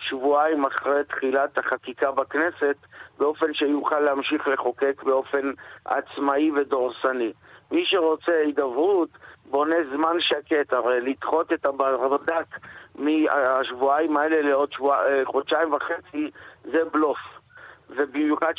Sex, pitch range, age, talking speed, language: male, 145-175 Hz, 50-69, 105 wpm, Hebrew